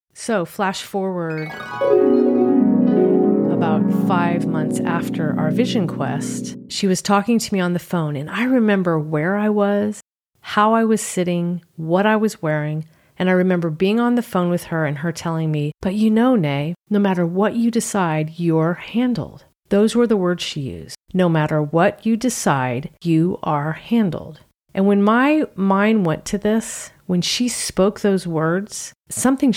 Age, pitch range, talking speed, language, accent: 40-59, 165-210 Hz, 170 wpm, English, American